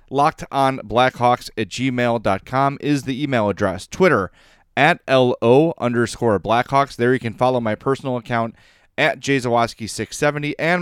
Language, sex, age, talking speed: English, male, 30-49, 135 wpm